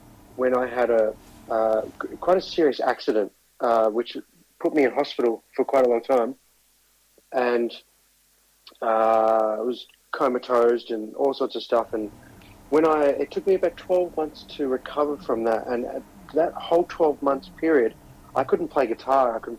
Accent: Australian